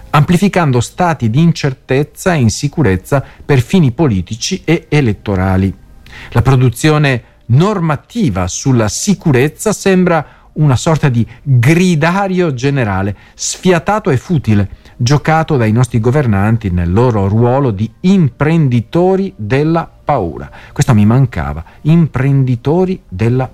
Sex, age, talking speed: male, 40-59, 105 wpm